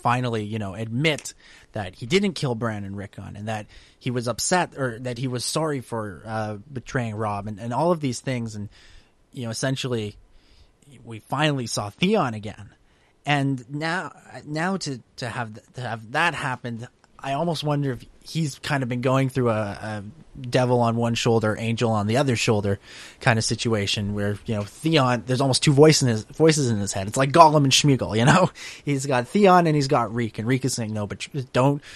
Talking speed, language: 205 wpm, English